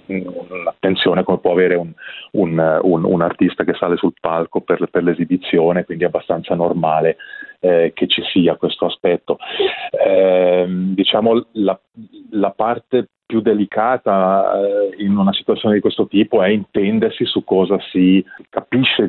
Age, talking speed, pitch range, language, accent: 30-49, 140 wpm, 85-105 Hz, Italian, native